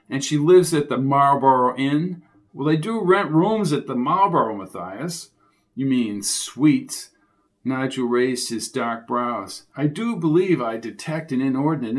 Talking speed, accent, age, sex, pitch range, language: 155 wpm, American, 50-69, male, 125-160 Hz, English